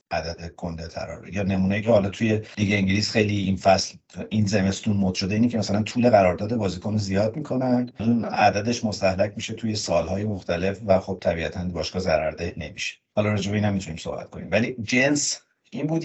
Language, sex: Persian, male